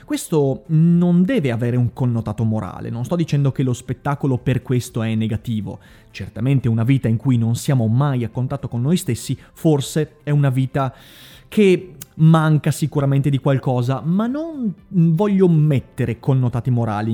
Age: 30-49